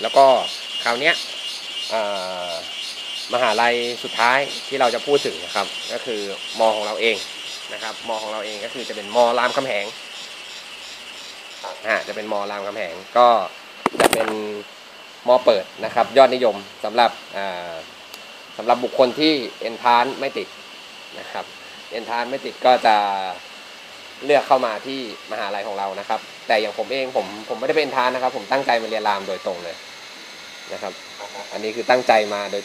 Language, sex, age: Thai, male, 20-39